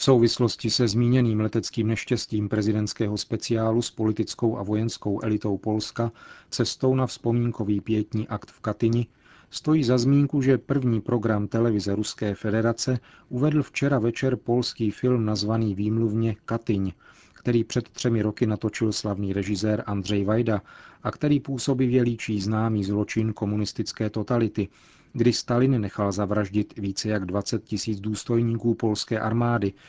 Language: Czech